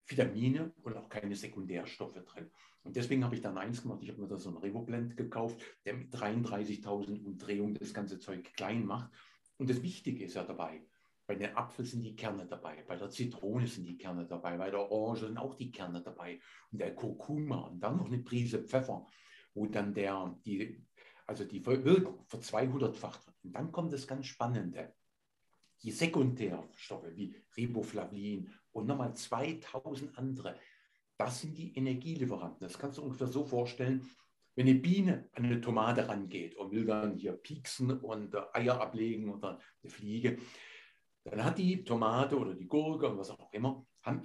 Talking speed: 175 wpm